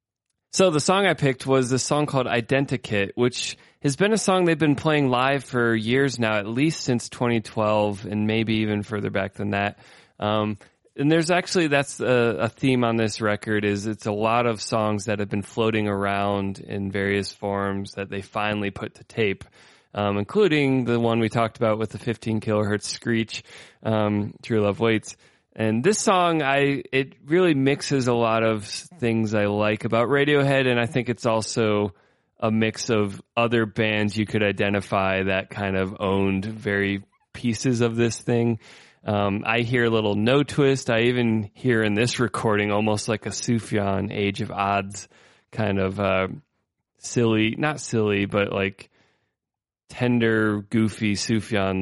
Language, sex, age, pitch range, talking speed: English, male, 20-39, 105-125 Hz, 170 wpm